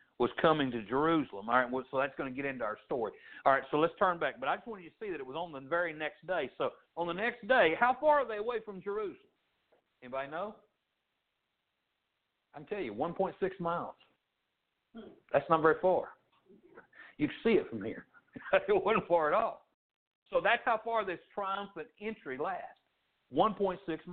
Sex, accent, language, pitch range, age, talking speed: male, American, English, 160-220 Hz, 60-79, 190 wpm